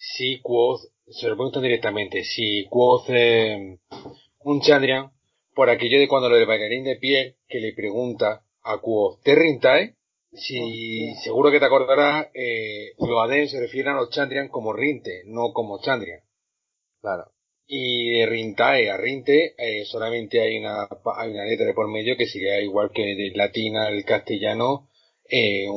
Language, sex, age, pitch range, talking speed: Spanish, male, 40-59, 120-160 Hz, 165 wpm